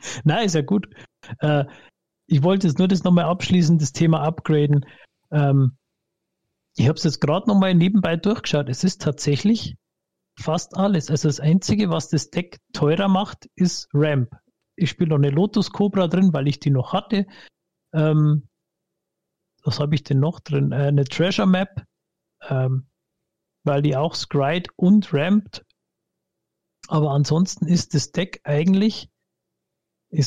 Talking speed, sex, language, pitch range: 150 wpm, male, German, 145-180 Hz